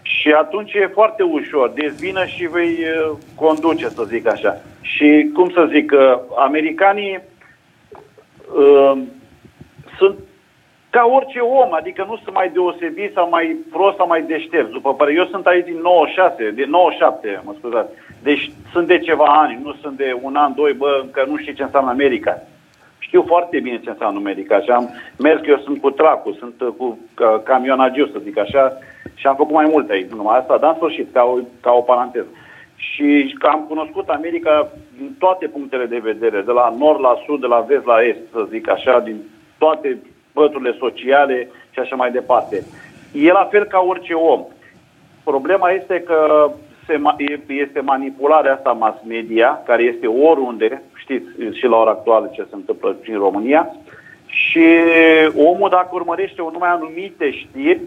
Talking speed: 170 wpm